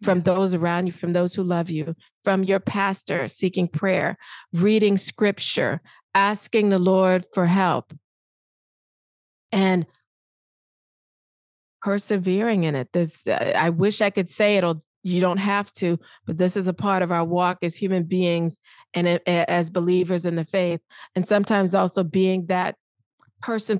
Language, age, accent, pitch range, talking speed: English, 40-59, American, 170-195 Hz, 145 wpm